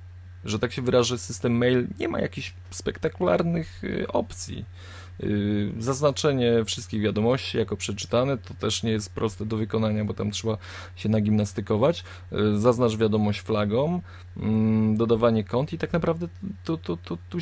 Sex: male